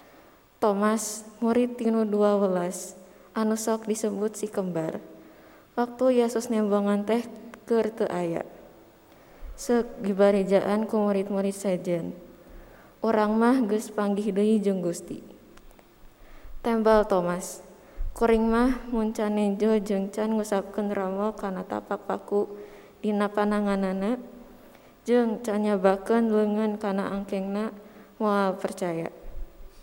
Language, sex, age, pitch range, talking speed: Indonesian, female, 20-39, 190-220 Hz, 90 wpm